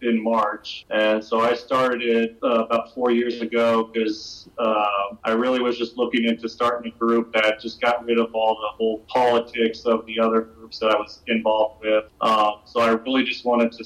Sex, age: male, 30-49